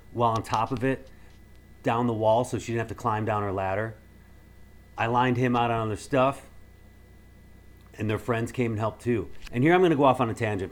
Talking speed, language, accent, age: 230 wpm, English, American, 40-59